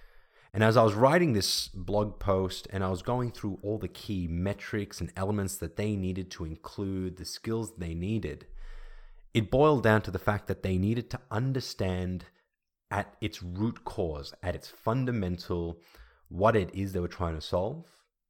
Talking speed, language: 175 wpm, English